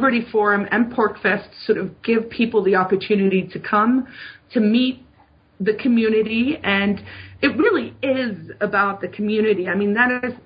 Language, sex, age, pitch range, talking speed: English, female, 40-59, 195-240 Hz, 150 wpm